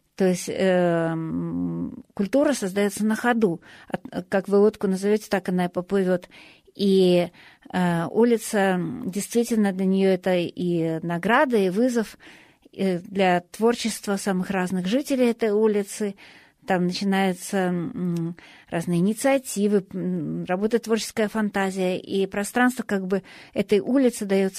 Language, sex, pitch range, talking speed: German, female, 180-215 Hz, 110 wpm